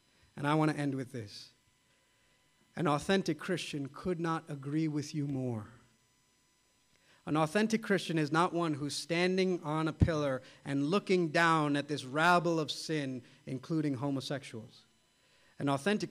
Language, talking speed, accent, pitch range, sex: English, 145 wpm, American, 140-170 Hz, male